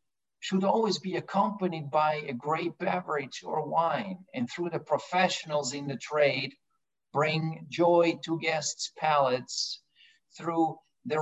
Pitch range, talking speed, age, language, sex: 145-180 Hz, 130 wpm, 50-69, English, male